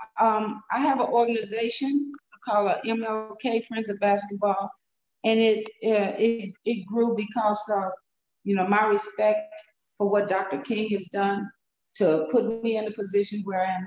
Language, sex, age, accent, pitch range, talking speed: English, female, 50-69, American, 200-225 Hz, 160 wpm